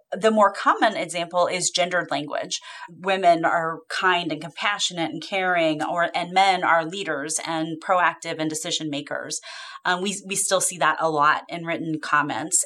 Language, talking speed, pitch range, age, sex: English, 165 wpm, 175-230 Hz, 30-49, female